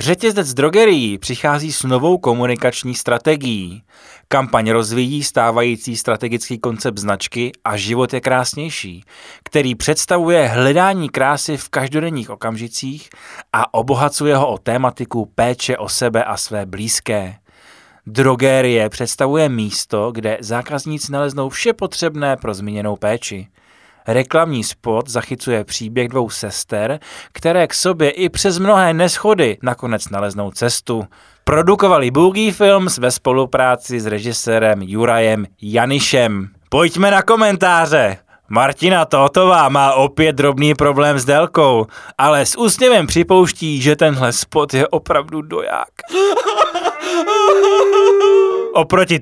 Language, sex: Czech, male